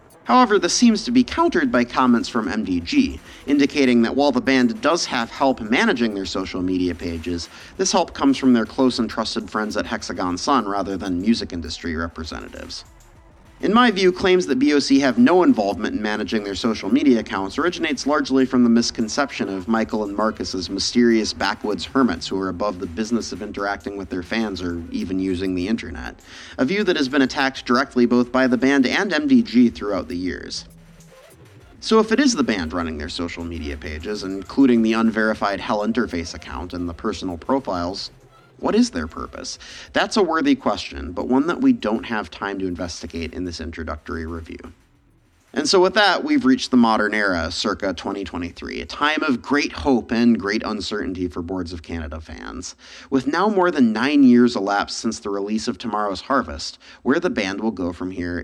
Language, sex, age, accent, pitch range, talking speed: English, male, 30-49, American, 90-140 Hz, 190 wpm